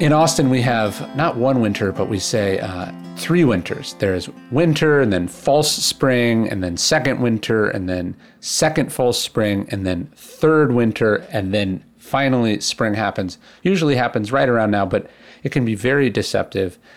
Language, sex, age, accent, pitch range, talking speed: English, male, 40-59, American, 110-150 Hz, 170 wpm